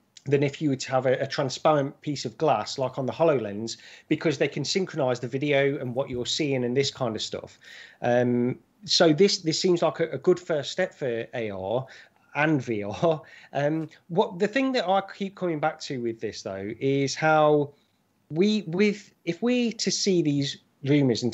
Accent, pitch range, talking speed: British, 120-160 Hz, 195 wpm